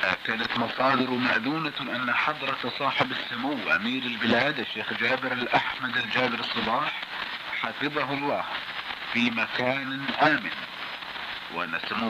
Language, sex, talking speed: Italian, male, 100 wpm